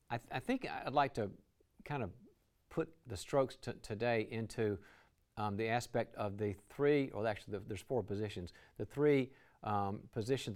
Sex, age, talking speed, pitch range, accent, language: male, 50-69, 175 wpm, 100-135 Hz, American, English